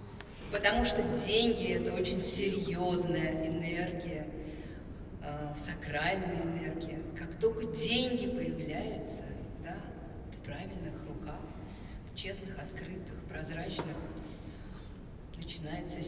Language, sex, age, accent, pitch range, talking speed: Russian, female, 40-59, native, 160-230 Hz, 85 wpm